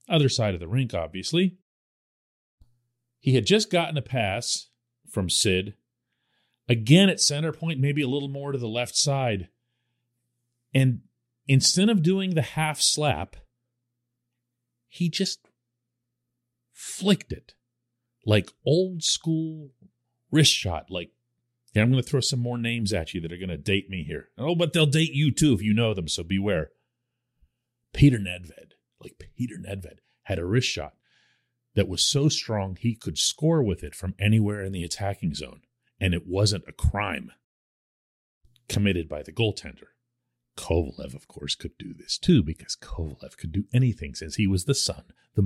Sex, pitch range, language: male, 100-135 Hz, English